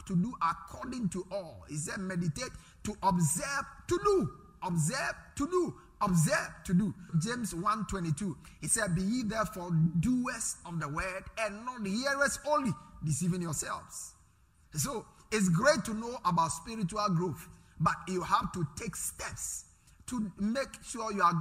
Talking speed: 150 wpm